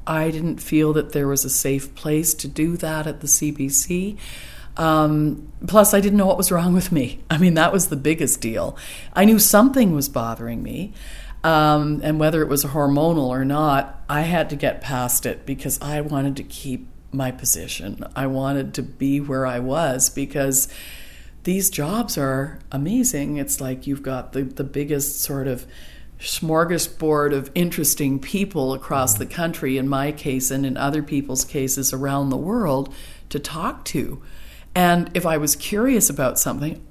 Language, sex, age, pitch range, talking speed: English, female, 50-69, 135-170 Hz, 175 wpm